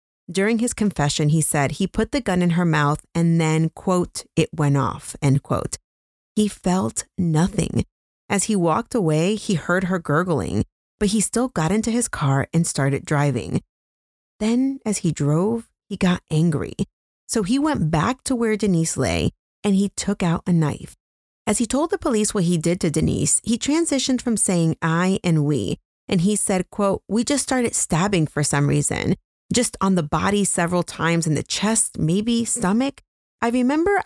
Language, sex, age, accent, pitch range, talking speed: English, female, 30-49, American, 150-210 Hz, 180 wpm